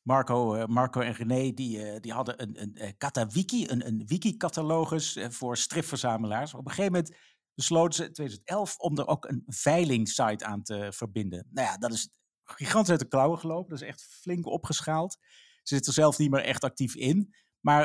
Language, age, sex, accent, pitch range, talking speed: Dutch, 50-69, male, Dutch, 130-165 Hz, 190 wpm